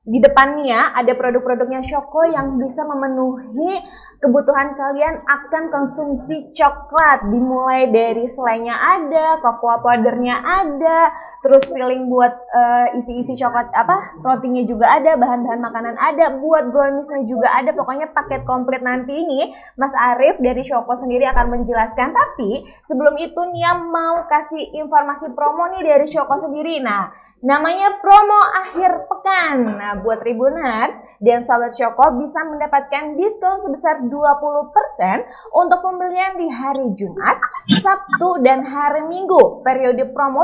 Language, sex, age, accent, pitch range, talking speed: Indonesian, female, 20-39, native, 250-320 Hz, 130 wpm